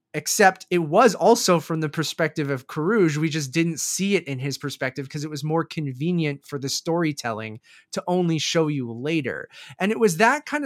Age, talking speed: 20-39, 195 wpm